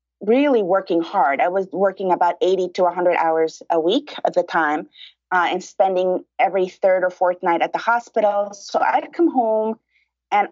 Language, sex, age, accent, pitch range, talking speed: English, female, 30-49, American, 190-280 Hz, 185 wpm